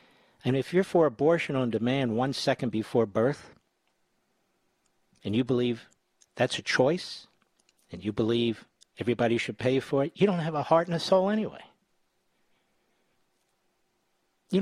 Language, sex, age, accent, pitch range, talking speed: English, male, 50-69, American, 120-170 Hz, 145 wpm